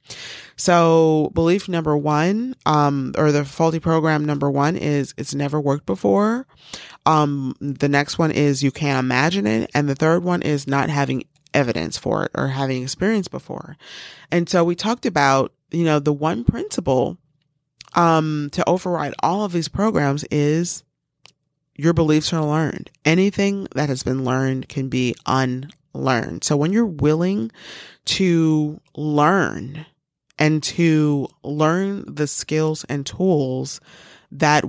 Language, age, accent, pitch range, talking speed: English, 30-49, American, 140-165 Hz, 145 wpm